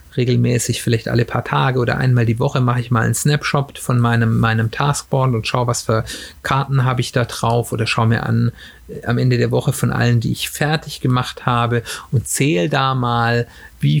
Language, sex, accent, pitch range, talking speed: German, male, German, 115-135 Hz, 200 wpm